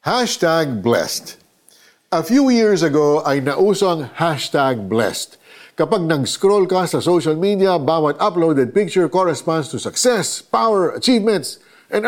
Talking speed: 125 wpm